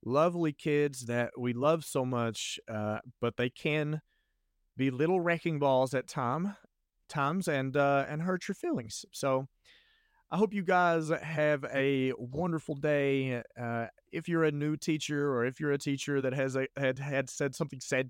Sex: male